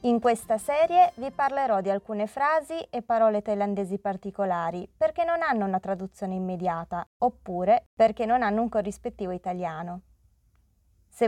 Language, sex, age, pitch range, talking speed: Italian, female, 20-39, 195-255 Hz, 140 wpm